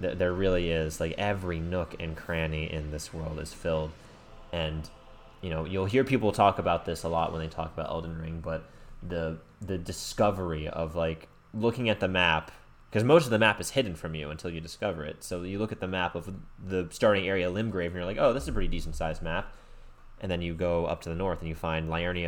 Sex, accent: male, American